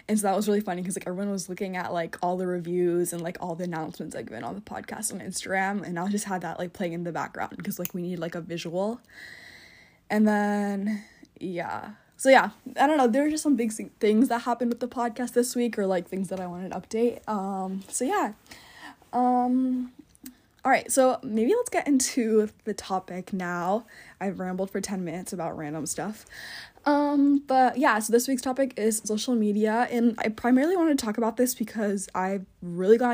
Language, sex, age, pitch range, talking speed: English, female, 10-29, 190-240 Hz, 215 wpm